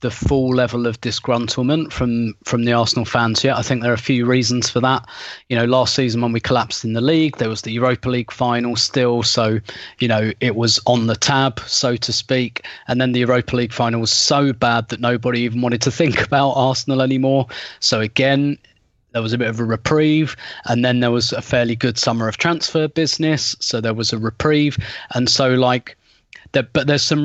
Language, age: English, 30-49